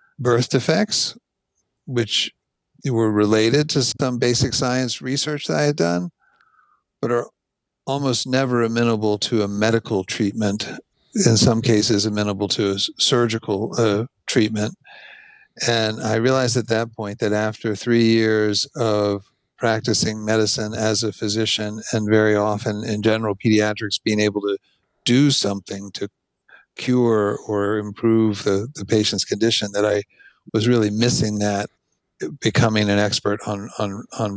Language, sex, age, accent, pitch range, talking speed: English, male, 60-79, American, 105-120 Hz, 140 wpm